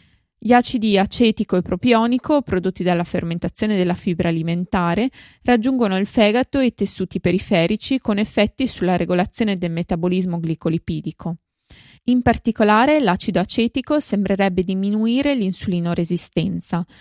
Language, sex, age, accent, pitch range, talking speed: Italian, female, 20-39, native, 180-230 Hz, 115 wpm